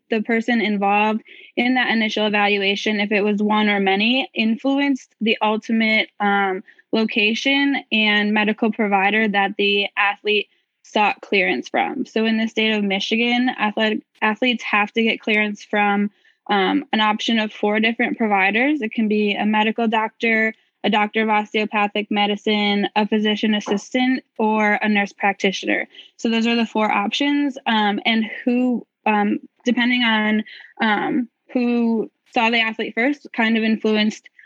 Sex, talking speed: female, 150 wpm